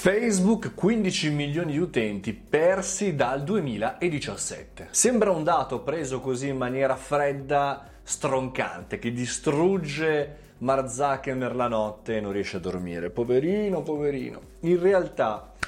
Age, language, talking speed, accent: 30-49, Italian, 120 wpm, native